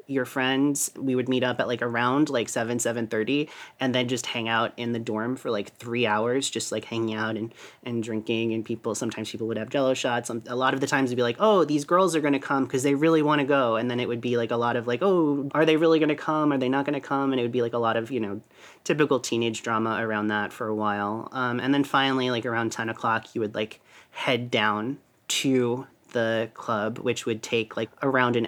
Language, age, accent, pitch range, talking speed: English, 30-49, American, 115-135 Hz, 265 wpm